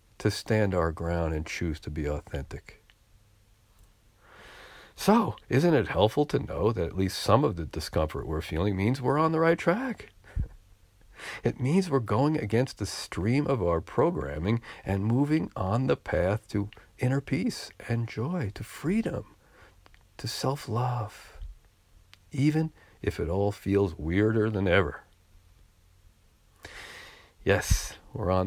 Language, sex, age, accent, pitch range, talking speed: English, male, 50-69, American, 85-130 Hz, 135 wpm